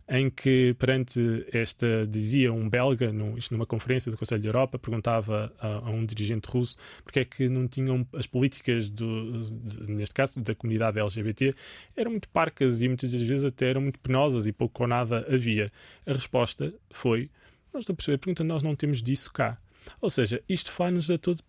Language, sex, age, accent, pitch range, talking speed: Portuguese, male, 20-39, Brazilian, 120-145 Hz, 195 wpm